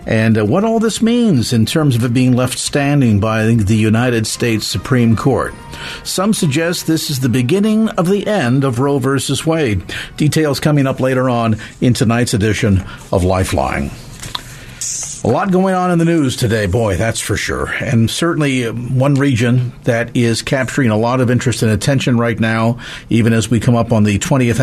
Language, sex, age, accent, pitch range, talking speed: English, male, 50-69, American, 110-145 Hz, 185 wpm